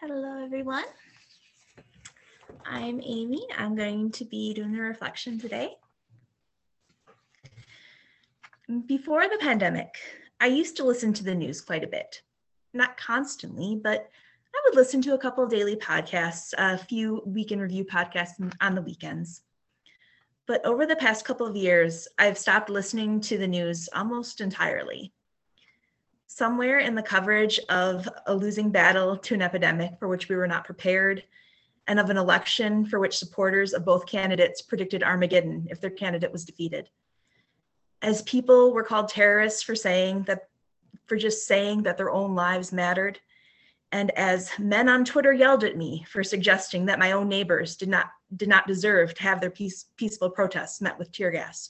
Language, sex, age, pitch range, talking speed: English, female, 20-39, 185-225 Hz, 160 wpm